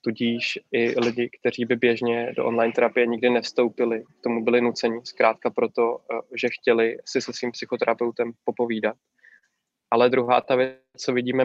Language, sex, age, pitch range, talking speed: Czech, male, 20-39, 115-125 Hz, 155 wpm